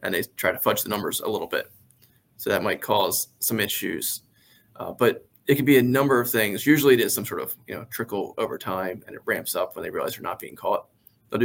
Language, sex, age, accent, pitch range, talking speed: English, male, 20-39, American, 105-120 Hz, 250 wpm